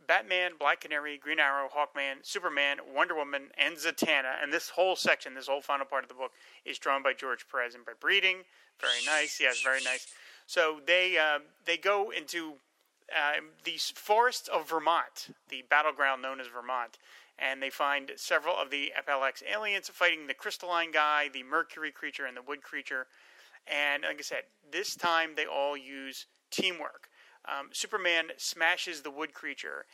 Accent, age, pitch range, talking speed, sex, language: American, 30-49, 135-160 Hz, 170 wpm, male, English